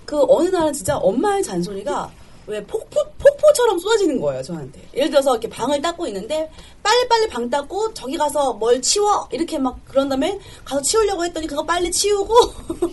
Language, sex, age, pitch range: Korean, female, 30-49, 240-350 Hz